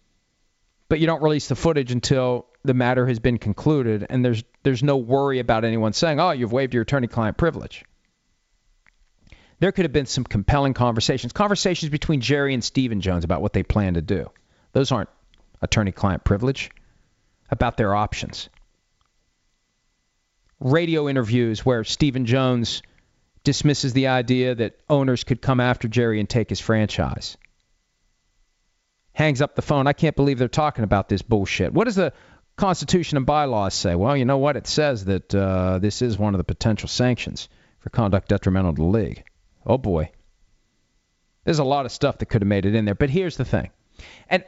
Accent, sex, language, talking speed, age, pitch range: American, male, English, 175 wpm, 40-59, 105-145 Hz